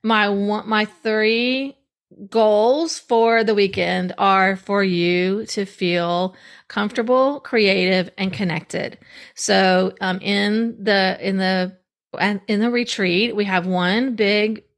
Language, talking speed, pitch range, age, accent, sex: English, 120 wpm, 190-230 Hz, 40-59, American, female